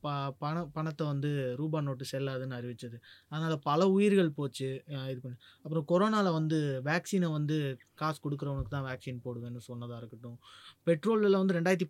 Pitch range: 145-200 Hz